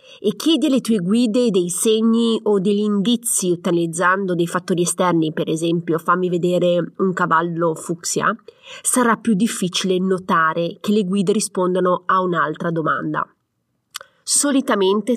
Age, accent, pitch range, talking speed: 30-49, native, 180-235 Hz, 130 wpm